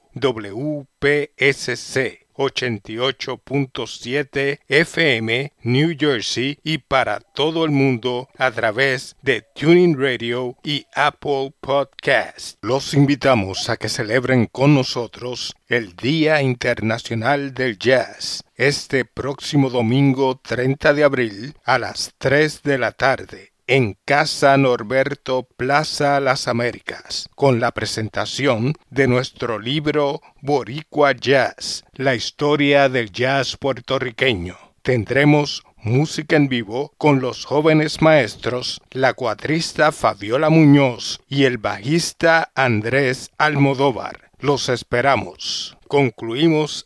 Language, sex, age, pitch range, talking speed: English, male, 50-69, 125-150 Hz, 105 wpm